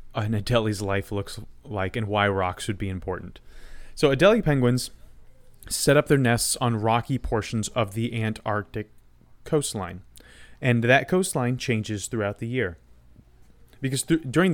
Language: English